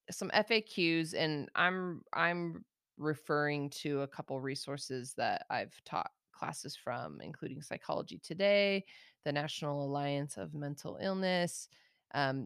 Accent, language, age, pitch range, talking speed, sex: American, English, 20-39, 140-165 Hz, 120 wpm, female